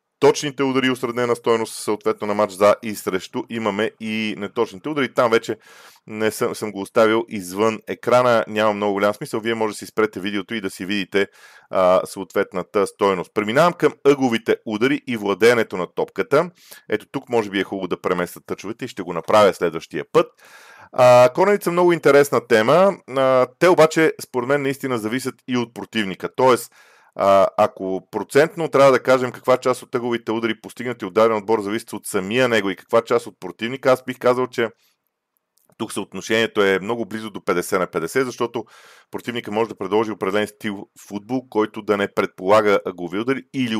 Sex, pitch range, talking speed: male, 105-130 Hz, 180 wpm